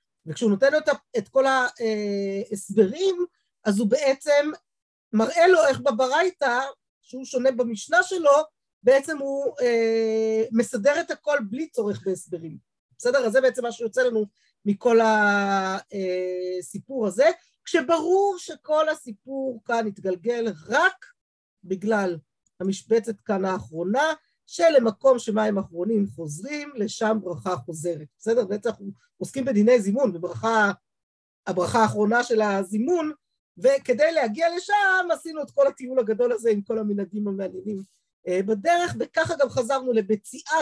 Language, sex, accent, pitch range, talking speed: Hebrew, female, native, 200-280 Hz, 120 wpm